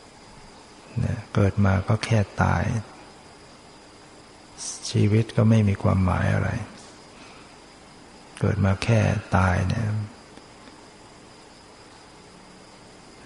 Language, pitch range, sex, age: Thai, 100-115 Hz, male, 60-79